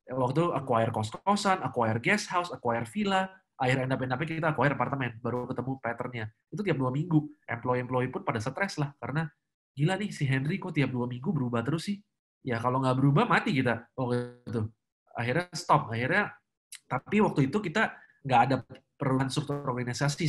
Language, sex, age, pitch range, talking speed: Indonesian, male, 20-39, 120-150 Hz, 165 wpm